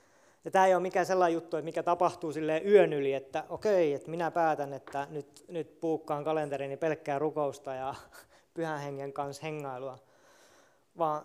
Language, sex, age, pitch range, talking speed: Finnish, male, 20-39, 140-170 Hz, 170 wpm